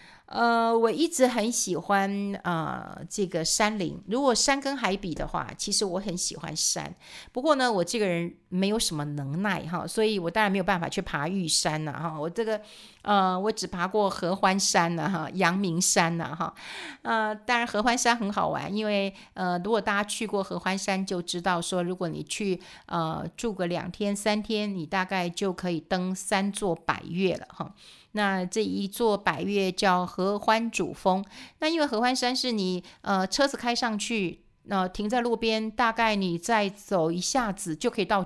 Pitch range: 180-220 Hz